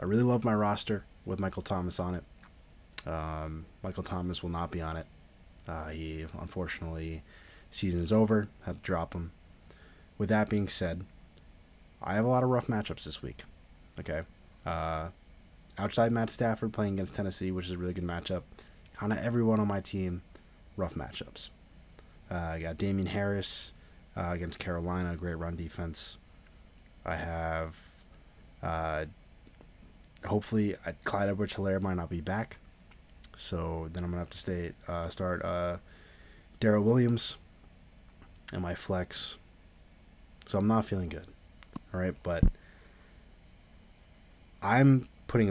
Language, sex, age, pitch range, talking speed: English, male, 20-39, 80-100 Hz, 145 wpm